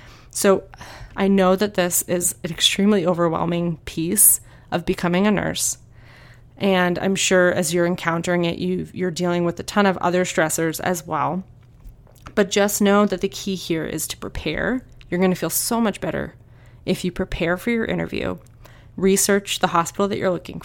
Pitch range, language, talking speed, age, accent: 130-195 Hz, English, 180 wpm, 20-39, American